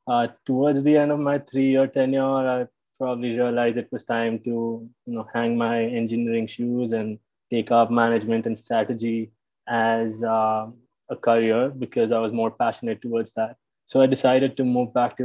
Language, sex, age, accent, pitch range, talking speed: English, male, 20-39, Indian, 115-130 Hz, 175 wpm